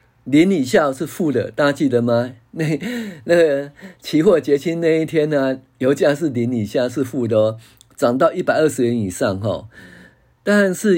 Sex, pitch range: male, 110-140 Hz